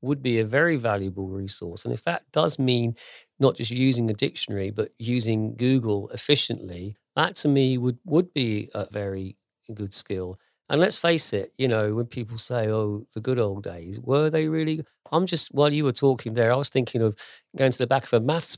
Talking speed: 210 wpm